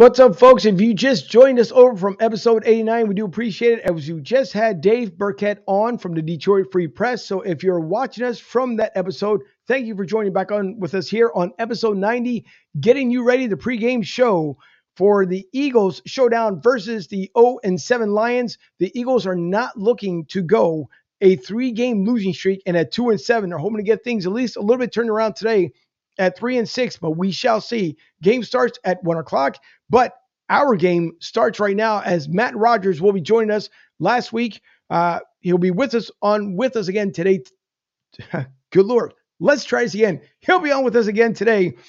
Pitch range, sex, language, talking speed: 185-235 Hz, male, English, 205 wpm